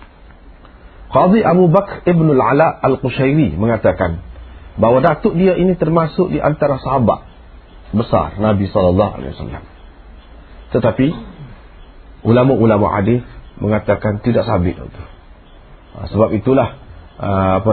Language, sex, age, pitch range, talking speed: Malay, male, 40-59, 85-125 Hz, 95 wpm